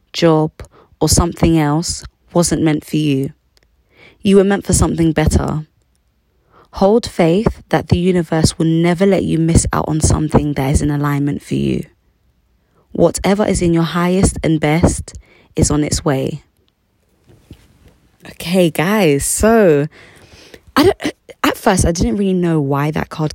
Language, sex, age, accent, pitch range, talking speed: English, female, 20-39, British, 140-175 Hz, 150 wpm